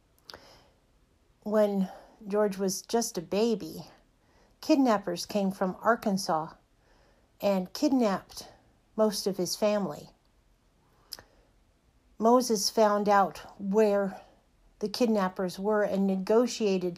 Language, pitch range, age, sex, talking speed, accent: English, 195-225 Hz, 50-69, female, 90 wpm, American